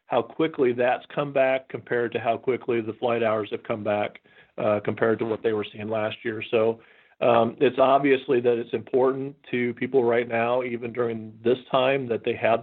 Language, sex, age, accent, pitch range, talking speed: English, male, 40-59, American, 115-130 Hz, 200 wpm